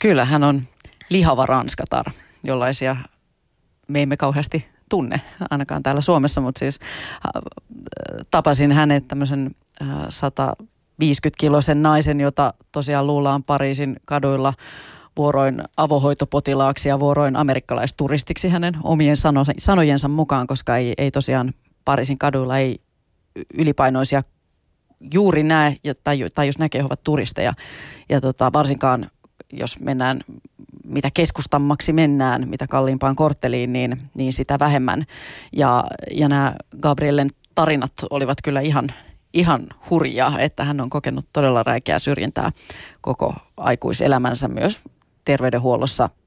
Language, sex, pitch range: Finnish, female, 135-150 Hz